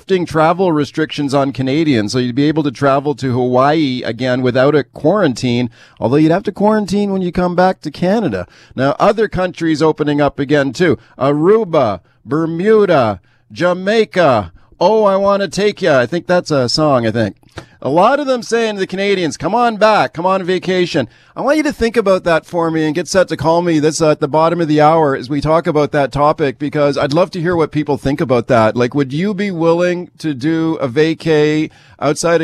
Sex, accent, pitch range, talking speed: male, American, 135-170 Hz, 205 wpm